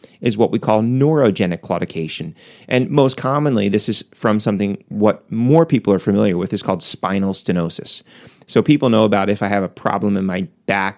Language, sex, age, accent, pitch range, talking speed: English, male, 30-49, American, 95-115 Hz, 190 wpm